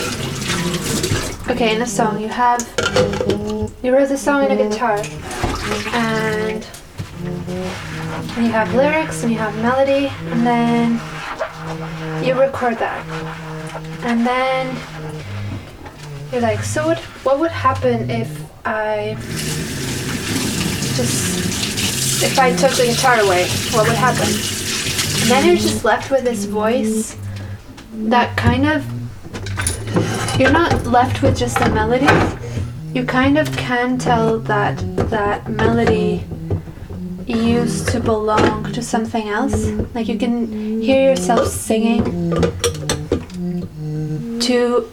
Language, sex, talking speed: English, female, 115 wpm